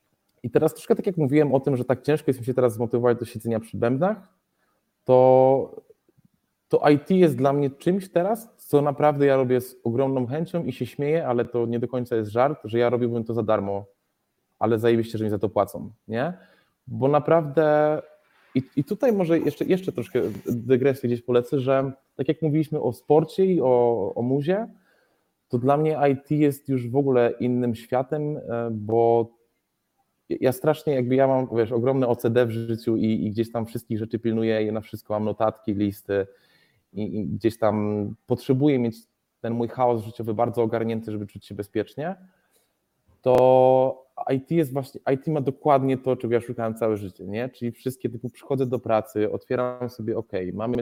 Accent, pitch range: native, 115-140 Hz